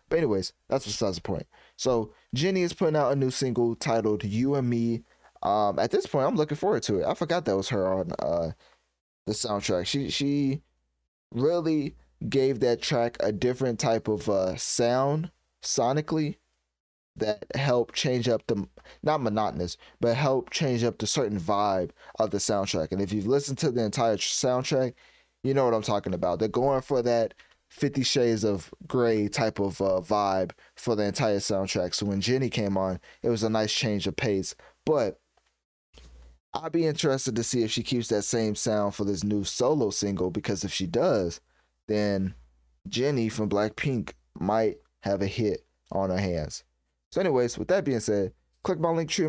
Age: 20-39